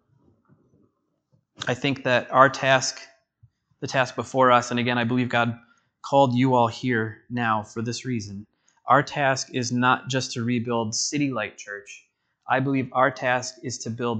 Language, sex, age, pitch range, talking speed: English, male, 20-39, 115-130 Hz, 165 wpm